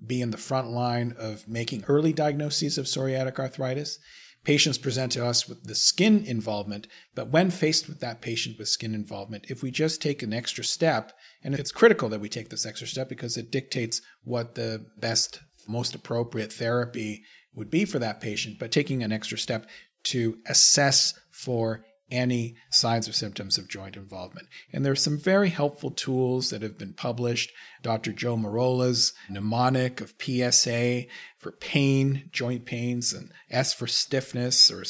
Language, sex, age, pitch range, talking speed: English, male, 40-59, 115-140 Hz, 170 wpm